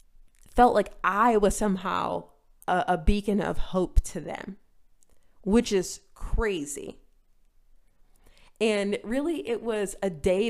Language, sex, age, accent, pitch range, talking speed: English, female, 20-39, American, 180-235 Hz, 120 wpm